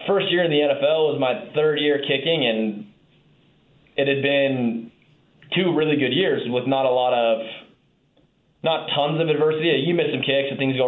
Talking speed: 190 wpm